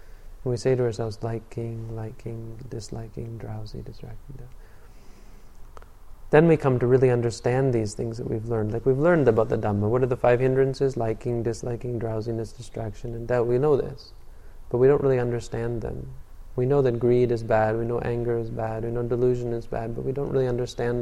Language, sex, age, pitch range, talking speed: English, male, 20-39, 110-125 Hz, 190 wpm